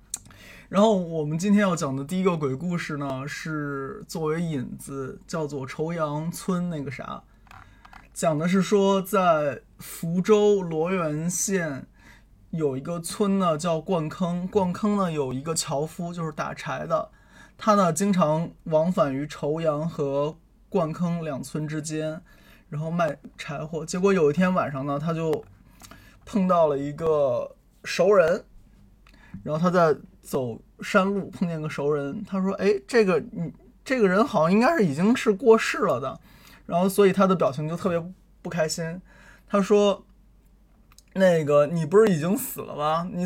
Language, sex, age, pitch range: Chinese, male, 20-39, 155-200 Hz